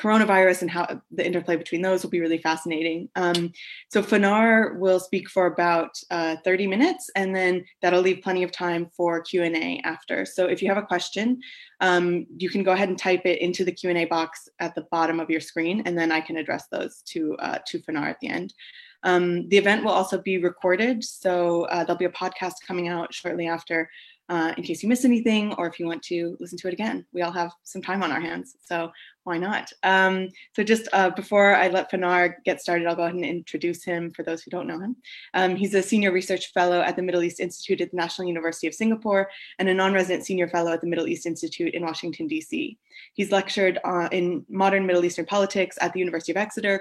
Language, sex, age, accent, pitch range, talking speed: English, female, 20-39, American, 170-195 Hz, 225 wpm